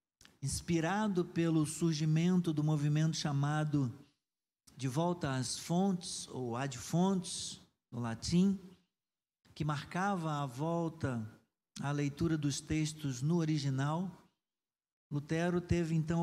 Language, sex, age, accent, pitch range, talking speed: Portuguese, male, 50-69, Brazilian, 140-170 Hz, 110 wpm